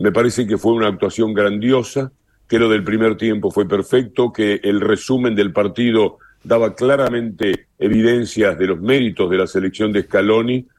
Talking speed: 165 wpm